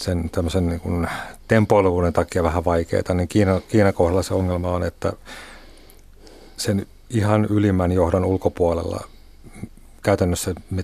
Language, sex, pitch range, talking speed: Finnish, male, 85-105 Hz, 115 wpm